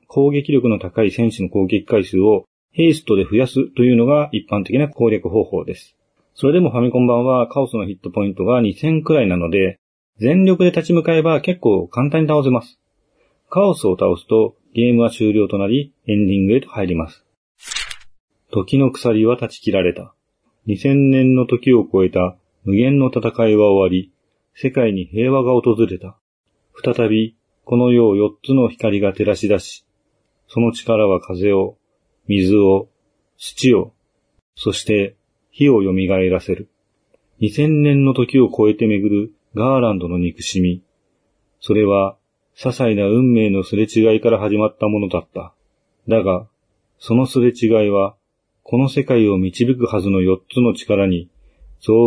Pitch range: 100-125 Hz